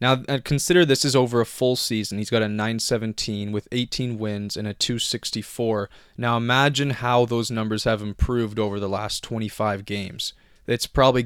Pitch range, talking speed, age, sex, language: 105-125 Hz, 175 wpm, 20-39, male, English